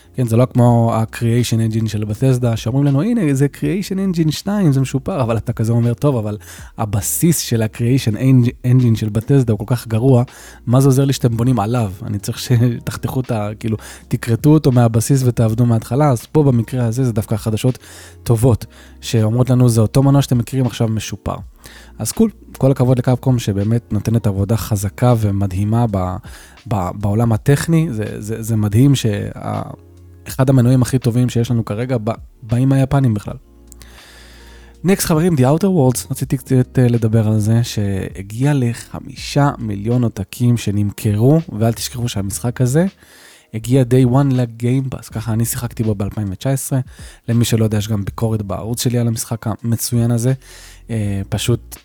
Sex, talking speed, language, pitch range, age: male, 155 wpm, Hebrew, 105-130 Hz, 20-39